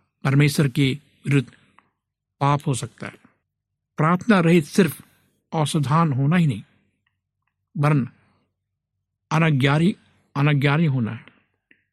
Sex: male